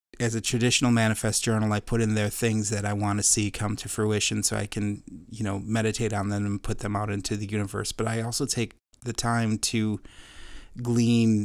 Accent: American